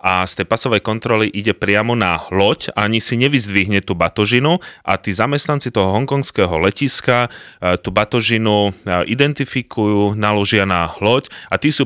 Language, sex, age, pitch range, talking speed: Slovak, male, 30-49, 95-130 Hz, 155 wpm